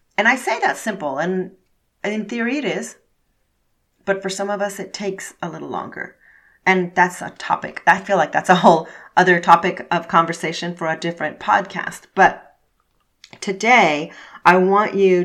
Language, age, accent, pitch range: English, 30-49, American, 175-205 Hz